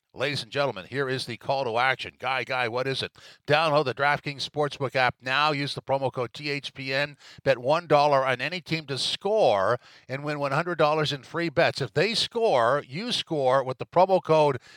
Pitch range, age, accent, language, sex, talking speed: 130-160 Hz, 50-69, American, English, male, 190 wpm